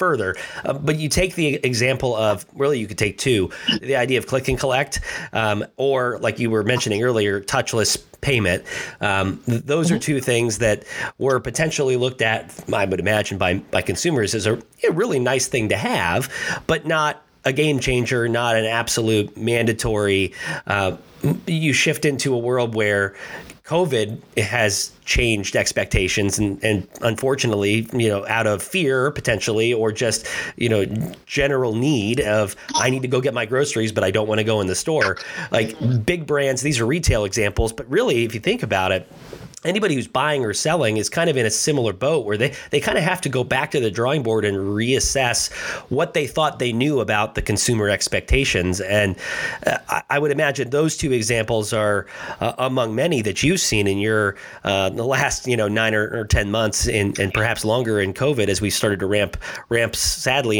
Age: 30-49